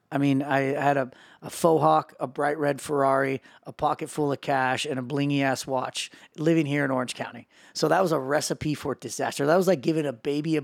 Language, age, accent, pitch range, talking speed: English, 30-49, American, 140-165 Hz, 230 wpm